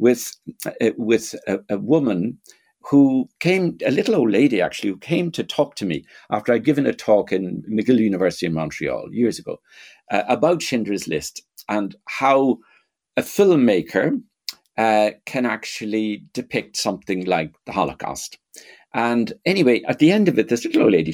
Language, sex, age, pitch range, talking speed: English, male, 60-79, 100-135 Hz, 160 wpm